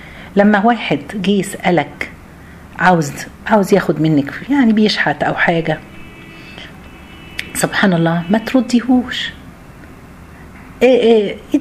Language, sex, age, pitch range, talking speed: Arabic, female, 50-69, 145-225 Hz, 100 wpm